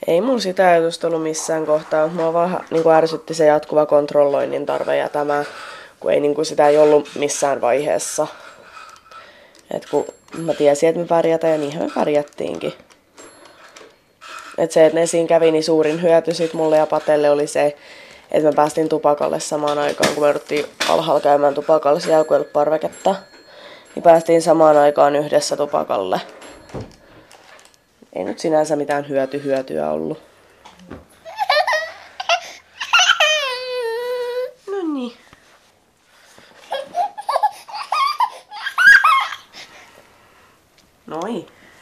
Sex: female